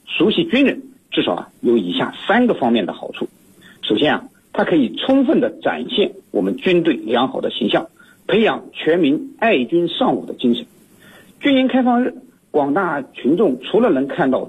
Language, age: Chinese, 50-69